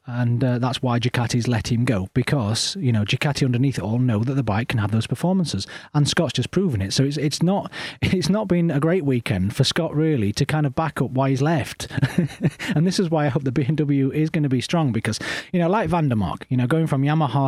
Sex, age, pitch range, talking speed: male, 30-49, 120-155 Hz, 245 wpm